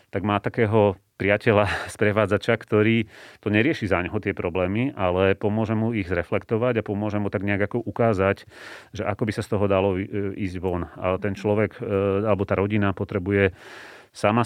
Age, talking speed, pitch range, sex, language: 30-49, 165 wpm, 95-110 Hz, male, Slovak